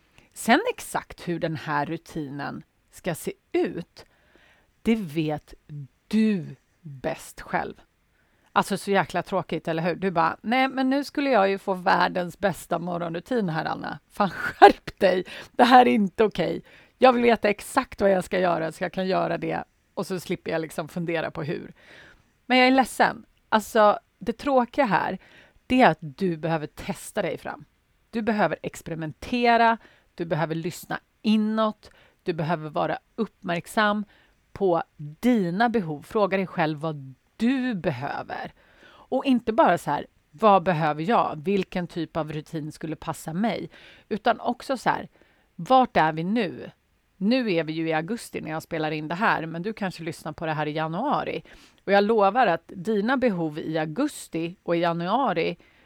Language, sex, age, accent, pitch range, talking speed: Swedish, female, 30-49, native, 165-225 Hz, 165 wpm